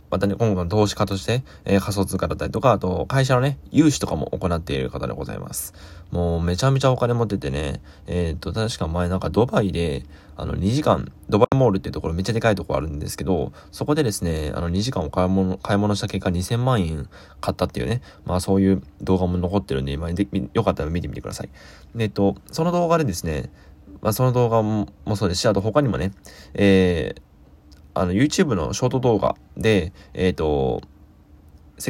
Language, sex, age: Japanese, male, 20-39